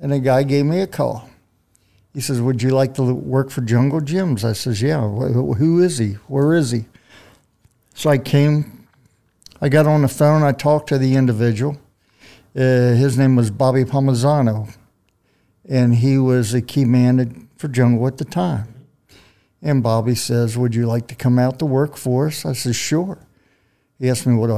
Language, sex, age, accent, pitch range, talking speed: English, male, 60-79, American, 120-145 Hz, 185 wpm